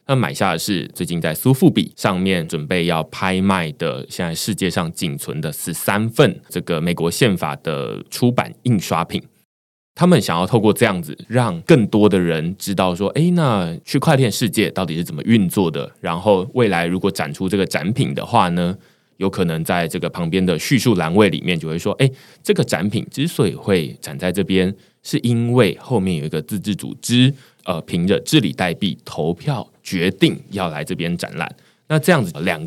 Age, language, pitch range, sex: 20-39, Chinese, 85-120 Hz, male